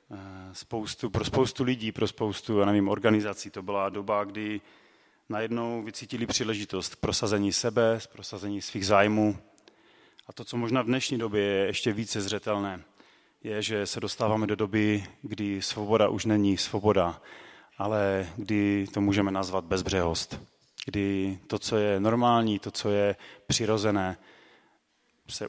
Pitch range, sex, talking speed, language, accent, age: 100-110 Hz, male, 140 wpm, Czech, native, 30-49